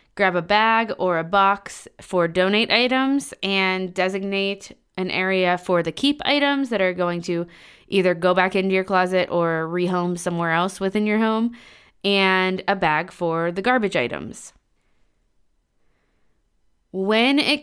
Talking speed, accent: 145 wpm, American